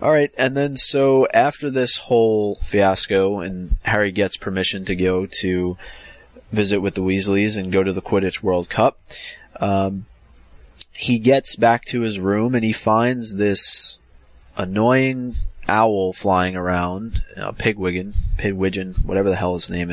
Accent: American